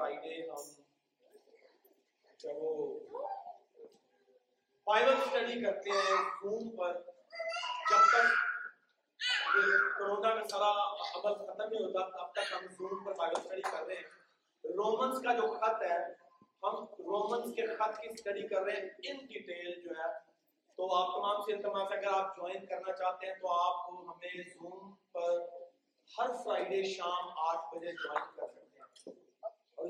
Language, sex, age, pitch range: Urdu, male, 40-59, 185-240 Hz